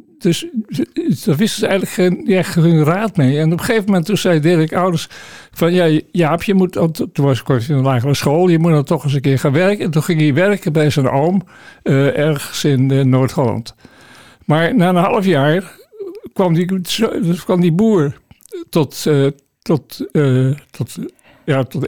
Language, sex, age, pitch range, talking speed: Dutch, male, 60-79, 140-185 Hz, 195 wpm